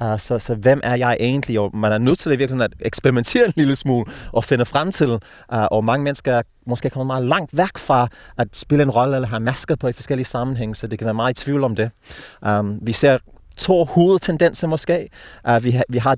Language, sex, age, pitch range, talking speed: Danish, male, 30-49, 110-140 Hz, 235 wpm